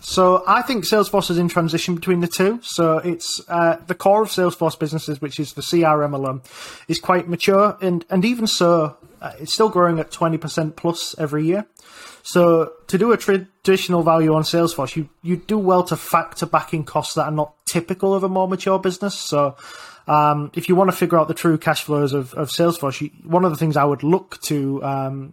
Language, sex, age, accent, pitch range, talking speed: English, male, 20-39, British, 150-180 Hz, 215 wpm